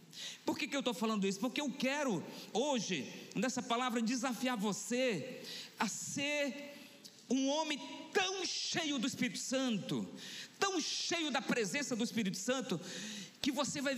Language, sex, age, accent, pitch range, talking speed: Portuguese, male, 50-69, Brazilian, 175-265 Hz, 145 wpm